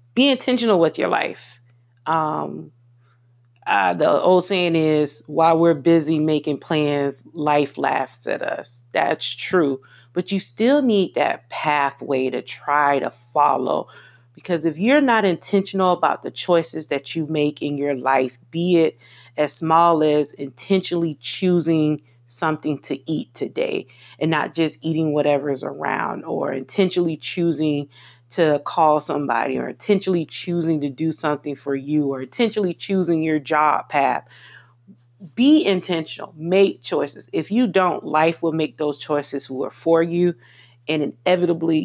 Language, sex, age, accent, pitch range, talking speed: English, female, 30-49, American, 135-170 Hz, 145 wpm